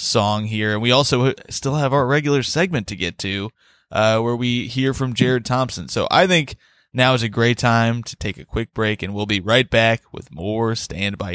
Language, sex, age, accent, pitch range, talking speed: English, male, 20-39, American, 110-130 Hz, 220 wpm